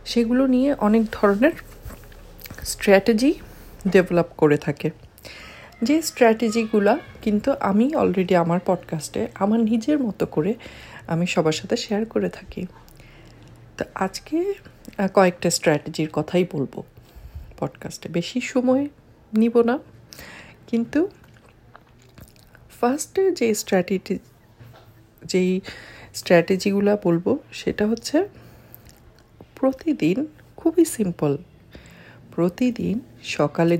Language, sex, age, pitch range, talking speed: Bengali, female, 50-69, 170-245 Hz, 70 wpm